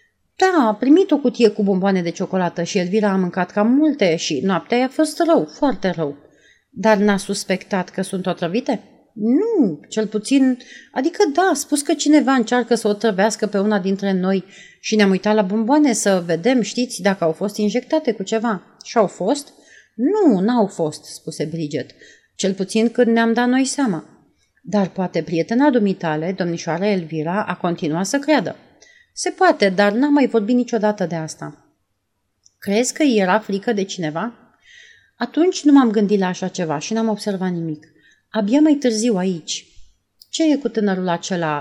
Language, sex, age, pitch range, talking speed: Romanian, female, 30-49, 175-245 Hz, 175 wpm